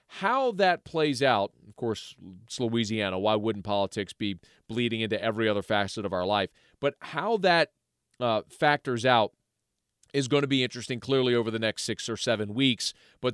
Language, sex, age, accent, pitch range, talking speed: English, male, 40-59, American, 105-130 Hz, 180 wpm